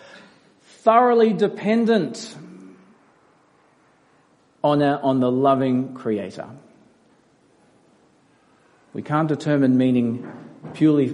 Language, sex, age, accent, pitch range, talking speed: English, male, 40-59, Australian, 125-195 Hz, 70 wpm